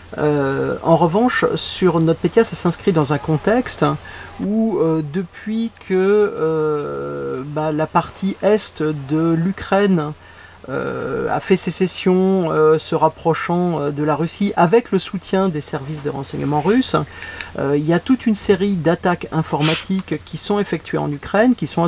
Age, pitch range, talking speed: 40-59, 150-190 Hz, 150 wpm